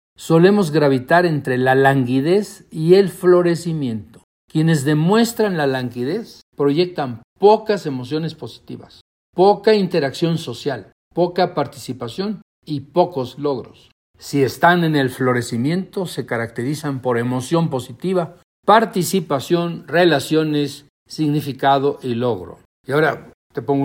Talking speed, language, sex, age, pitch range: 110 wpm, Spanish, male, 60-79, 130-175 Hz